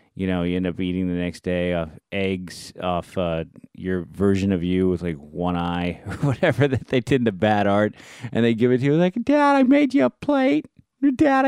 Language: English